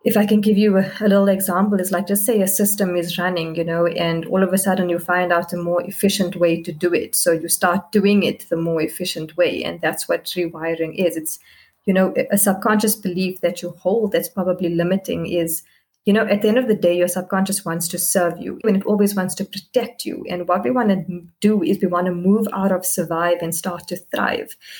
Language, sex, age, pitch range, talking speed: English, female, 20-39, 175-205 Hz, 240 wpm